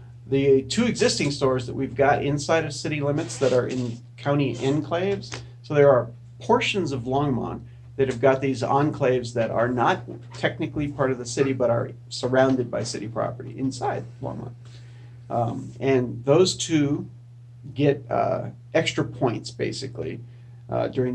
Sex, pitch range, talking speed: male, 120-135 Hz, 155 wpm